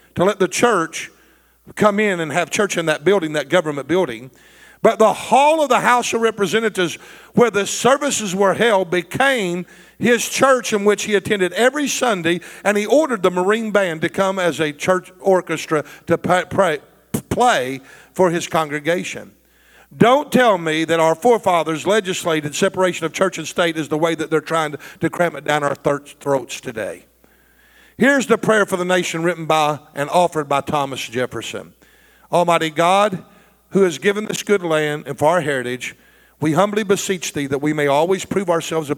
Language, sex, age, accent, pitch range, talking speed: English, male, 50-69, American, 150-200 Hz, 180 wpm